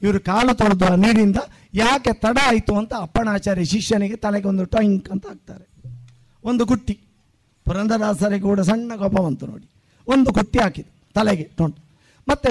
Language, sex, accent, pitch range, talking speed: Kannada, male, native, 160-225 Hz, 140 wpm